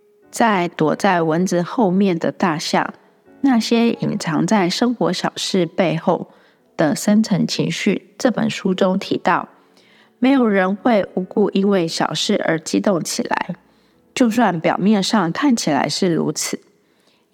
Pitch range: 175-225 Hz